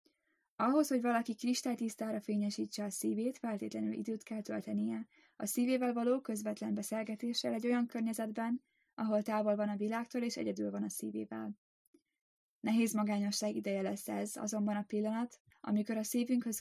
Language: Hungarian